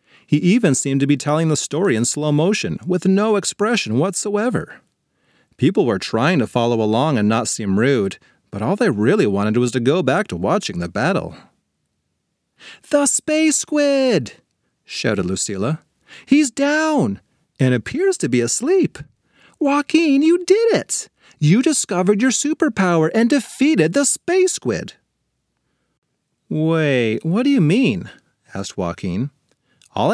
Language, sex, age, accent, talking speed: English, male, 30-49, American, 140 wpm